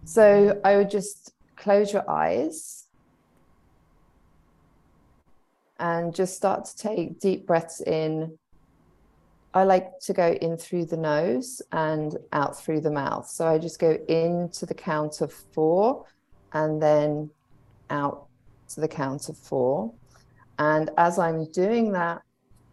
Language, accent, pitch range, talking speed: English, British, 140-170 Hz, 135 wpm